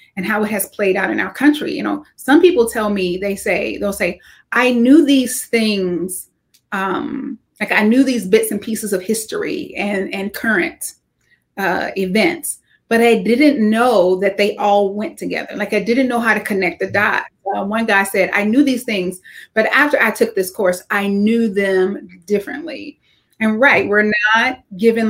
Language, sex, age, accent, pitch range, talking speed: English, female, 30-49, American, 200-245 Hz, 190 wpm